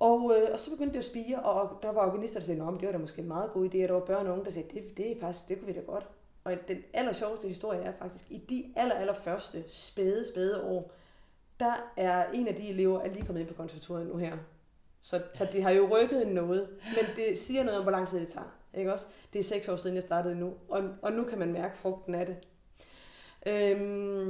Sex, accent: female, native